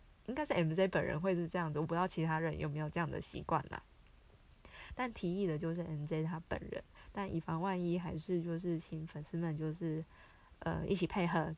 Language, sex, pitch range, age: Chinese, female, 160-185 Hz, 20-39